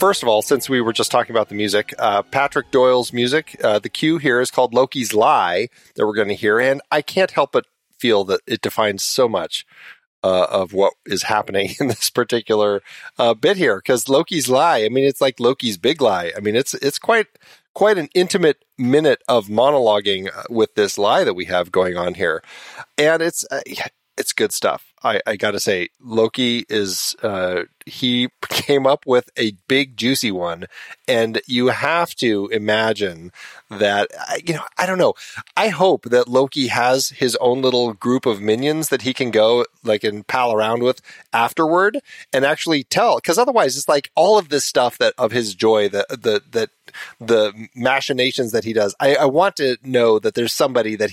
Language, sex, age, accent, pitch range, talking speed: English, male, 40-59, American, 110-145 Hz, 195 wpm